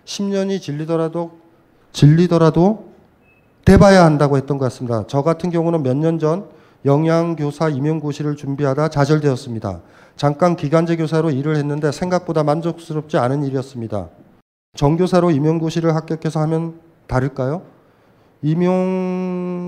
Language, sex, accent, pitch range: Korean, male, native, 140-175 Hz